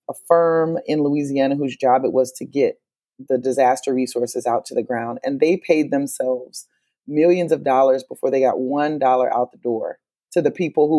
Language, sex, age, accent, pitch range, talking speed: English, female, 30-49, American, 135-165 Hz, 190 wpm